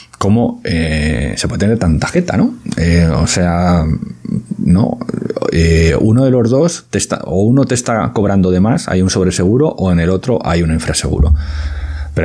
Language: Spanish